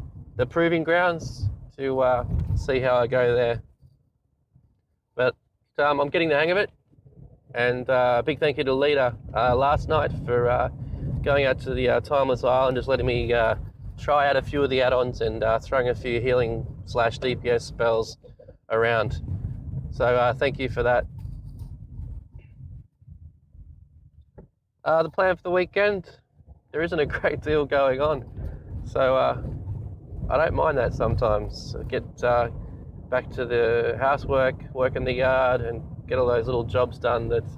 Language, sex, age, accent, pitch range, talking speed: English, male, 20-39, Australian, 115-140 Hz, 165 wpm